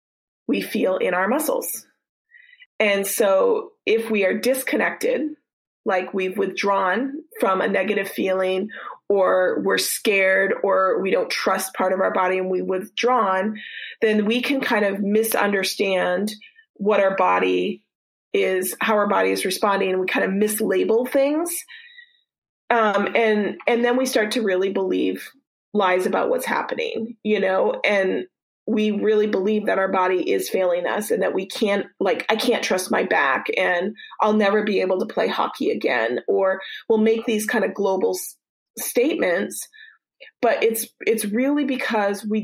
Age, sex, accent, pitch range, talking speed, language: 30-49, female, American, 195-275 Hz, 160 wpm, English